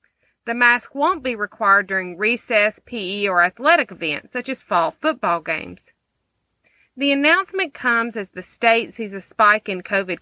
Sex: female